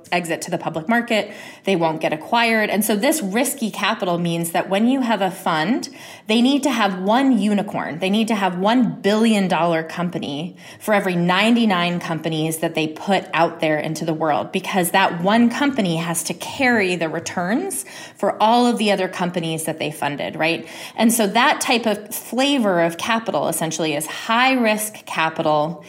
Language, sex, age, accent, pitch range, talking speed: English, female, 20-39, American, 170-220 Hz, 180 wpm